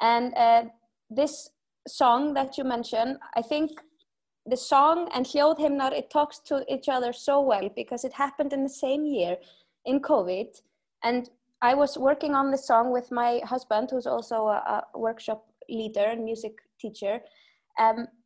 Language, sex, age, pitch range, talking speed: English, female, 20-39, 230-285 Hz, 160 wpm